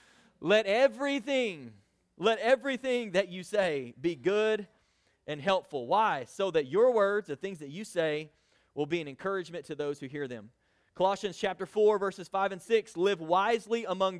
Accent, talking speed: American, 170 wpm